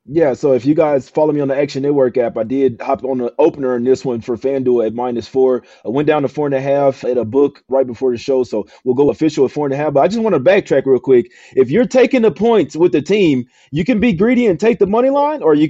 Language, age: English, 30-49